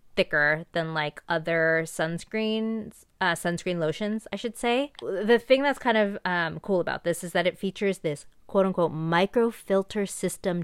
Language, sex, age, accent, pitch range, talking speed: English, female, 20-39, American, 160-195 Hz, 165 wpm